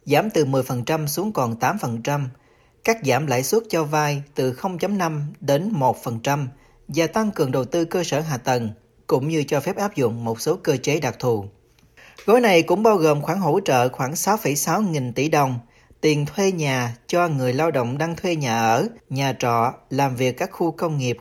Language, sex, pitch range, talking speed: Vietnamese, male, 125-165 Hz, 195 wpm